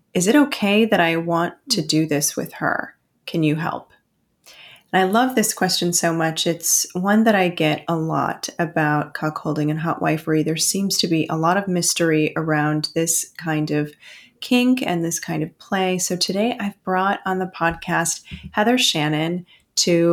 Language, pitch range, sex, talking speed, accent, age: English, 165-205 Hz, female, 180 wpm, American, 30-49